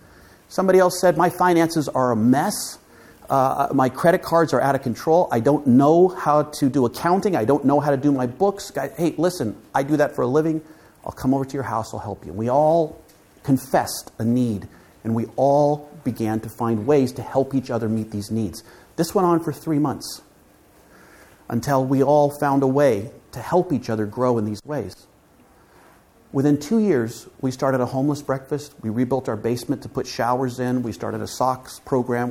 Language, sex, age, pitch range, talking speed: English, male, 40-59, 115-155 Hz, 200 wpm